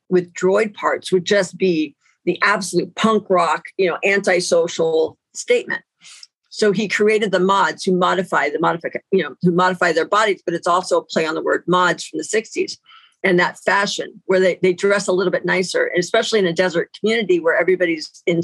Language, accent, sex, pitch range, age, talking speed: English, American, female, 180-220 Hz, 50-69, 200 wpm